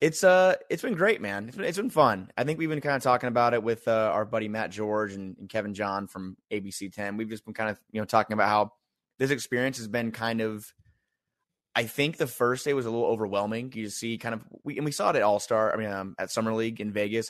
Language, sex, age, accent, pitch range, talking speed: English, male, 20-39, American, 105-120 Hz, 270 wpm